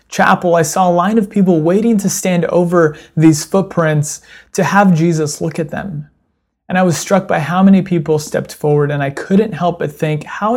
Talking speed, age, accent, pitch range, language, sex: 205 wpm, 30-49, American, 140-170 Hz, English, male